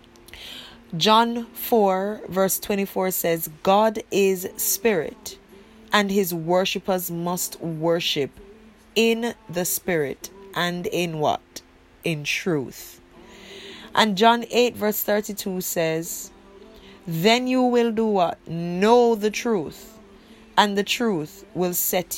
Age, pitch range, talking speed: 20-39, 185-230 Hz, 110 wpm